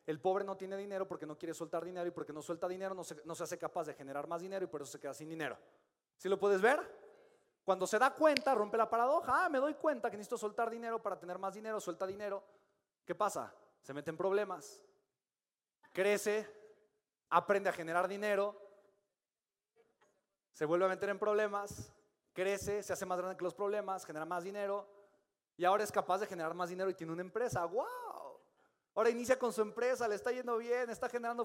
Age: 30-49